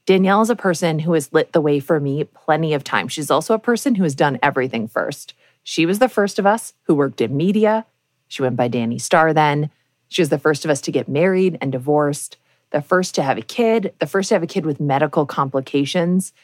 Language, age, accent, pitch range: English, 20-39, American, 145-200 Hz